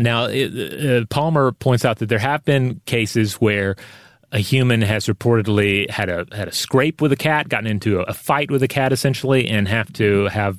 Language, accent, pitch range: English, American, 100-125 Hz